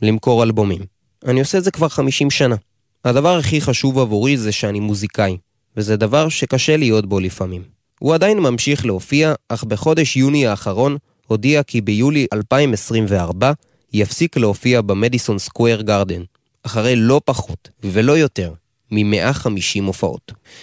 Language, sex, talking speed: Hebrew, male, 135 wpm